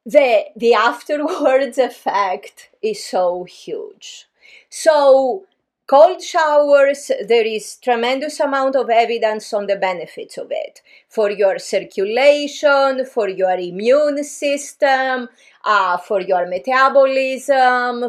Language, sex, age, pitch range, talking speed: English, female, 30-49, 215-285 Hz, 105 wpm